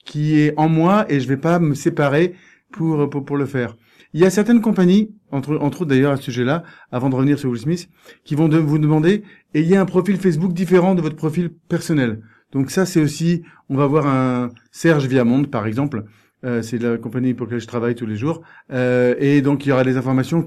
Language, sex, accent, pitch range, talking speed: French, male, French, 130-165 Hz, 235 wpm